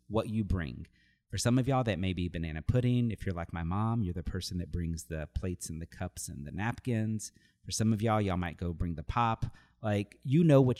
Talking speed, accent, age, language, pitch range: 245 wpm, American, 40-59, English, 95-120 Hz